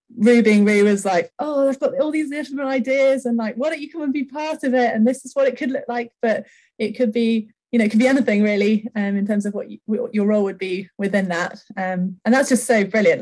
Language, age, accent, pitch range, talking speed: English, 20-39, British, 180-245 Hz, 275 wpm